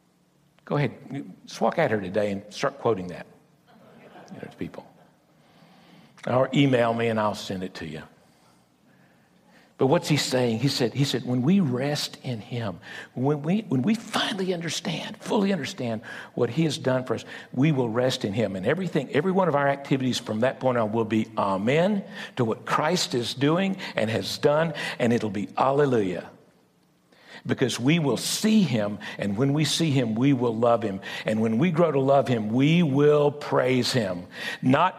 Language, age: English, 60-79